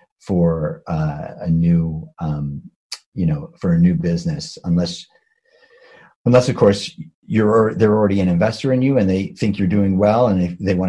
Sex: male